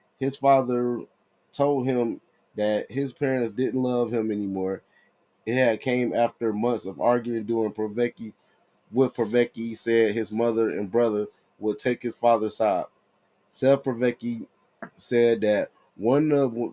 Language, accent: English, American